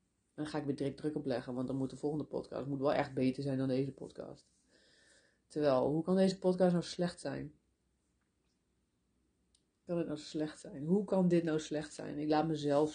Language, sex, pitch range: Dutch, female, 140-160 Hz